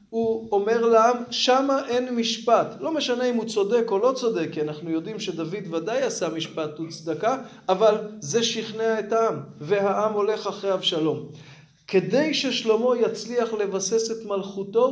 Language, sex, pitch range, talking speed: Hebrew, male, 175-225 Hz, 150 wpm